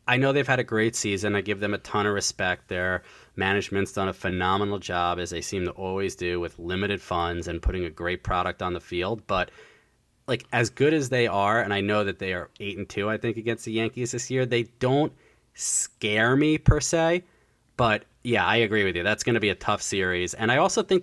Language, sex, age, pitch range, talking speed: English, male, 30-49, 90-115 Hz, 235 wpm